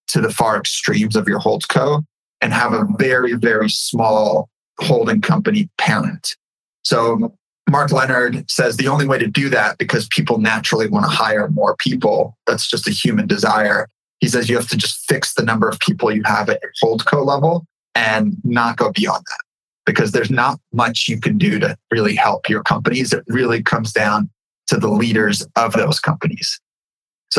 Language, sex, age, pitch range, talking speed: English, male, 20-39, 115-150 Hz, 185 wpm